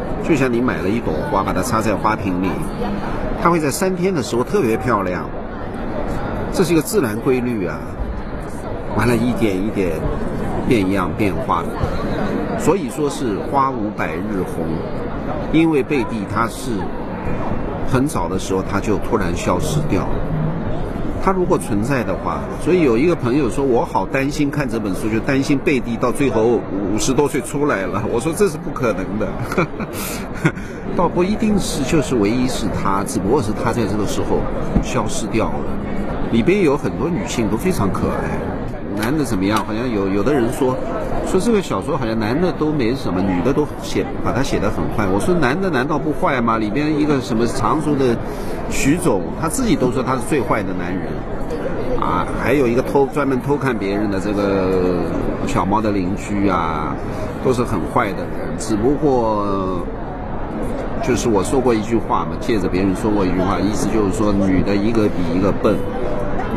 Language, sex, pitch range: Chinese, male, 95-135 Hz